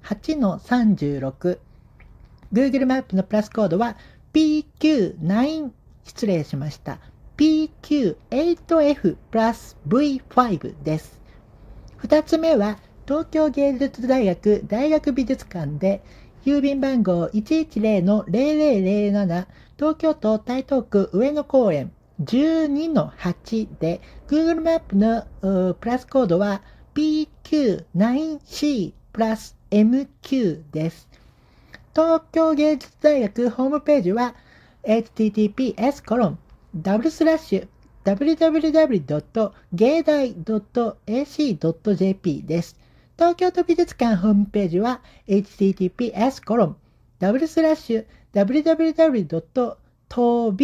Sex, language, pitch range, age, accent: male, Japanese, 195-290 Hz, 50-69, native